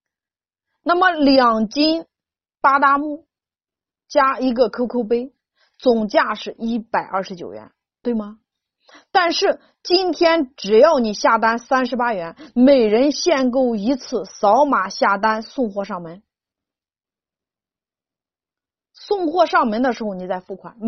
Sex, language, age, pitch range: female, Chinese, 30-49, 220-315 Hz